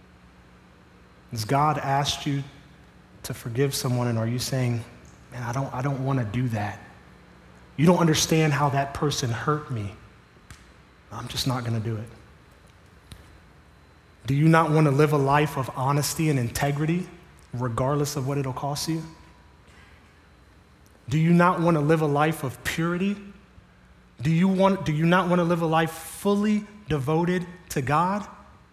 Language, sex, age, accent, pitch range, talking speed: English, male, 30-49, American, 120-185 Hz, 145 wpm